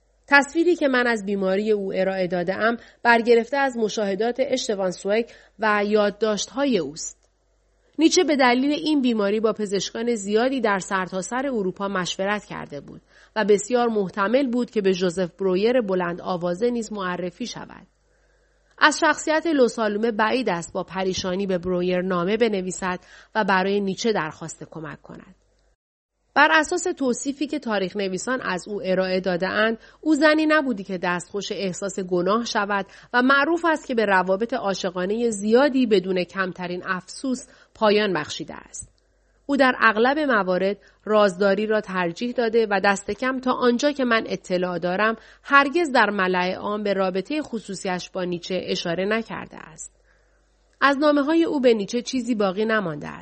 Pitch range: 190-250 Hz